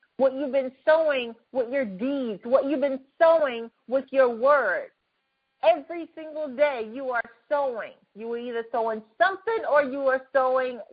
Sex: female